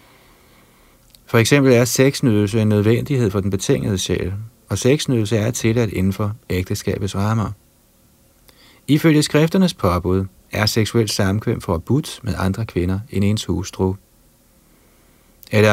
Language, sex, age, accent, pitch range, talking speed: Danish, male, 30-49, native, 95-120 Hz, 120 wpm